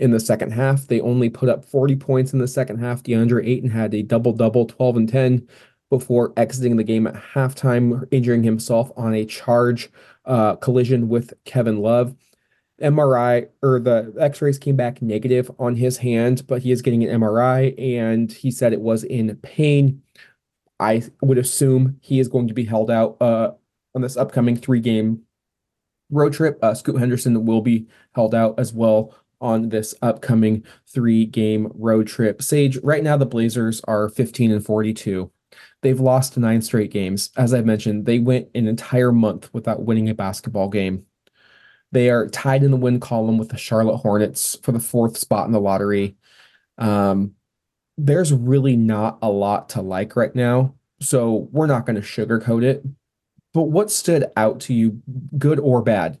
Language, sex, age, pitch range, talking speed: English, male, 20-39, 110-130 Hz, 175 wpm